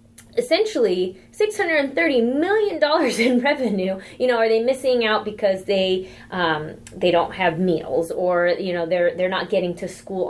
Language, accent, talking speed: English, American, 165 wpm